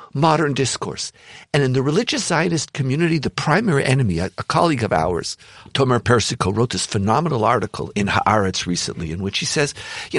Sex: male